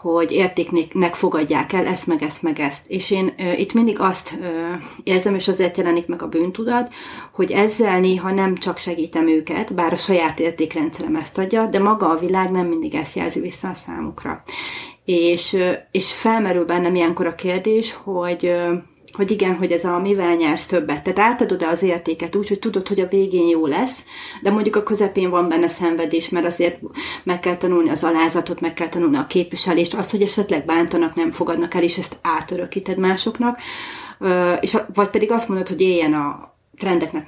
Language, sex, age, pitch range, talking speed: Hungarian, female, 30-49, 170-215 Hz, 180 wpm